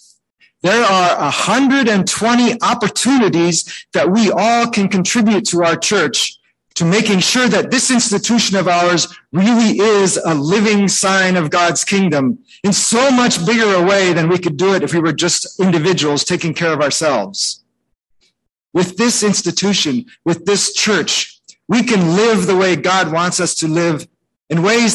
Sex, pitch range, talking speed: male, 155-205 Hz, 160 wpm